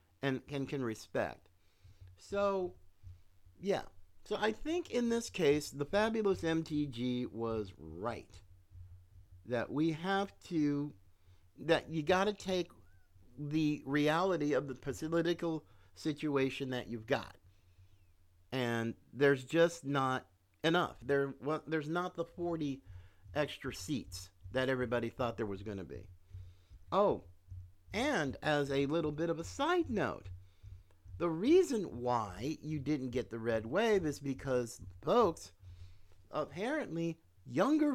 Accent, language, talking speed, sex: American, English, 125 wpm, male